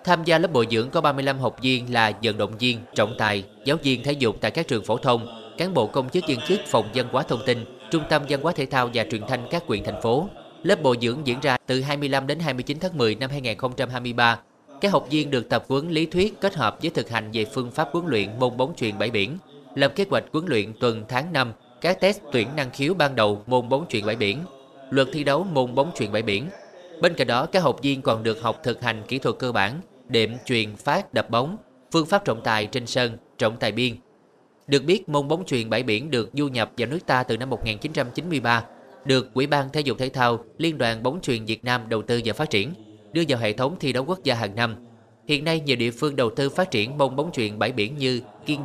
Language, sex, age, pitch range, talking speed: Vietnamese, male, 20-39, 115-150 Hz, 250 wpm